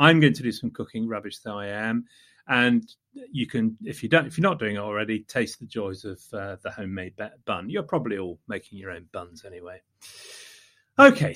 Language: English